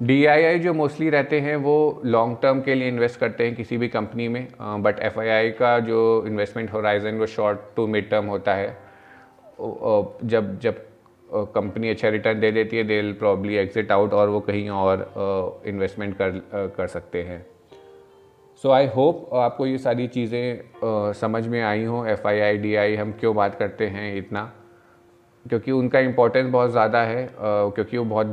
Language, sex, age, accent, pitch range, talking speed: Hindi, male, 30-49, native, 105-120 Hz, 170 wpm